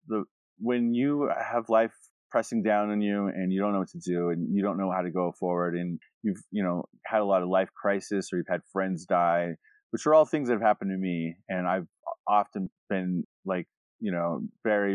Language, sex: English, male